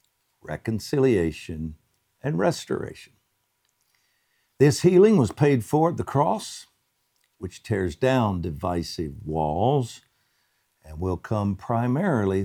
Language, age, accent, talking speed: English, 60-79, American, 95 wpm